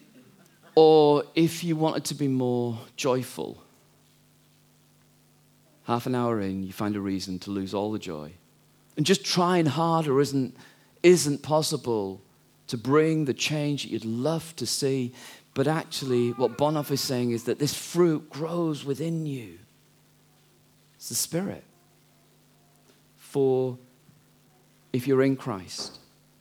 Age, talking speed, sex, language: 40-59, 130 wpm, male, English